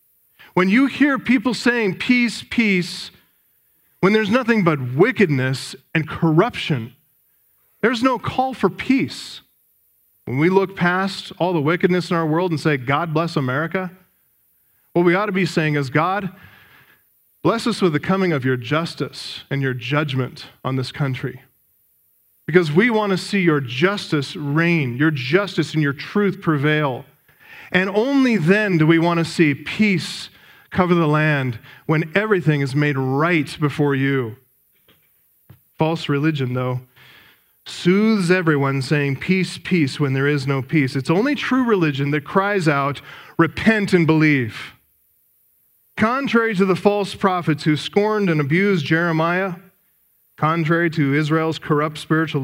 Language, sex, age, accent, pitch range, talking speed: English, male, 40-59, American, 140-185 Hz, 145 wpm